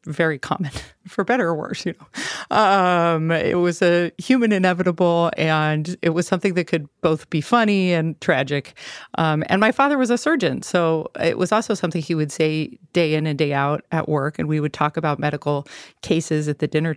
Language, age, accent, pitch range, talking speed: English, 40-59, American, 155-185 Hz, 200 wpm